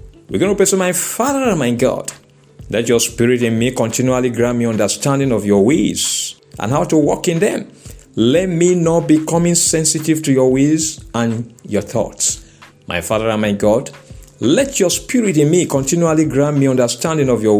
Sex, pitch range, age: male, 120-165 Hz, 50-69